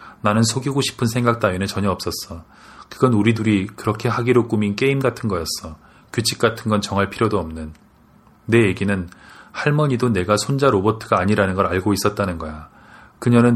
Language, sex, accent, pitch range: Korean, male, native, 95-115 Hz